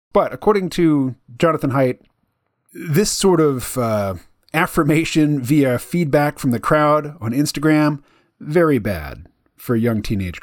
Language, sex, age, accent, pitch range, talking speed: English, male, 40-59, American, 120-155 Hz, 125 wpm